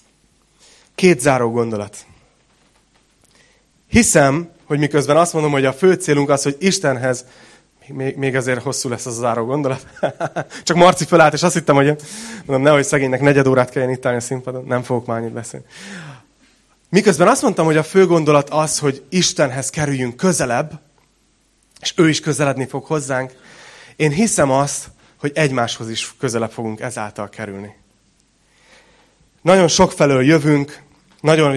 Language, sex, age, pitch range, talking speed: Hungarian, male, 30-49, 125-155 Hz, 150 wpm